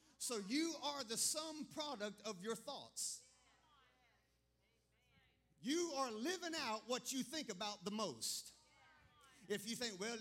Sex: male